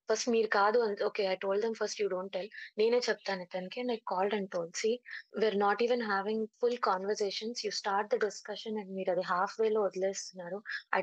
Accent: native